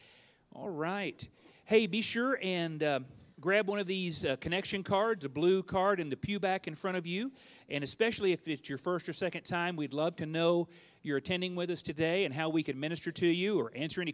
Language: English